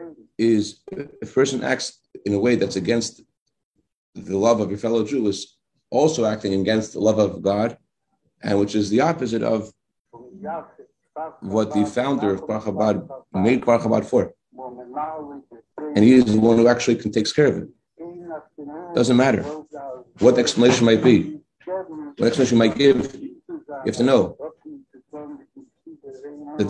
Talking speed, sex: 145 wpm, male